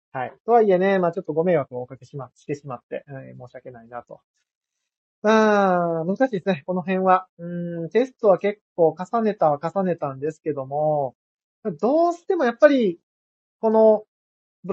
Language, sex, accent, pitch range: Japanese, male, native, 150-230 Hz